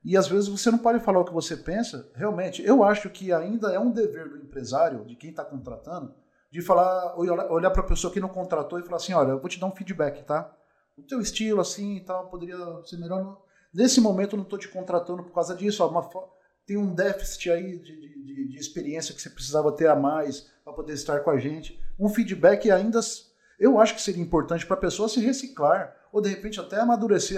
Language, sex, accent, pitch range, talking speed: Portuguese, male, Brazilian, 170-225 Hz, 230 wpm